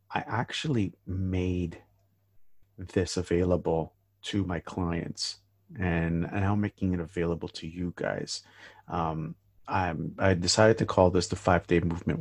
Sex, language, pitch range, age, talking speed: male, English, 85-100 Hz, 50-69, 140 wpm